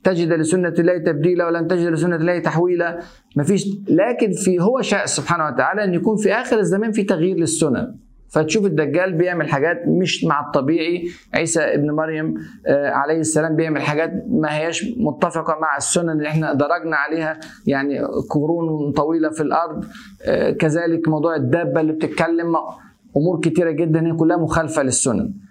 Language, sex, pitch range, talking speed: Arabic, male, 155-180 Hz, 150 wpm